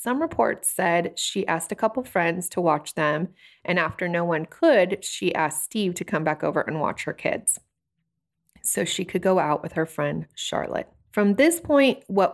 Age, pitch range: 30-49, 165-215 Hz